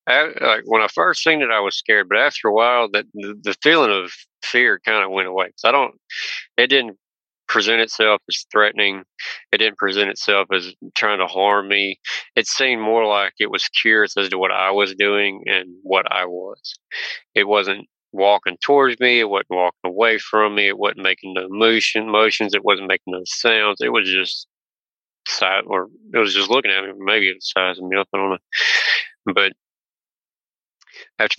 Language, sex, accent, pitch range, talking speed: English, male, American, 95-110 Hz, 195 wpm